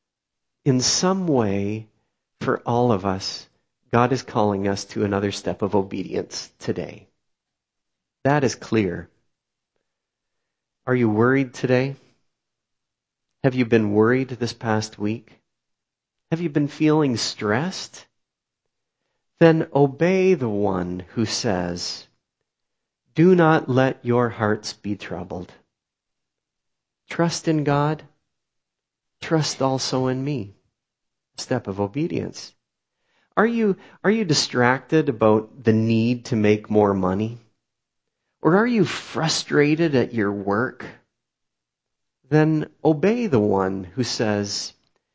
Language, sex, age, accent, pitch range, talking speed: English, male, 40-59, American, 110-155 Hz, 110 wpm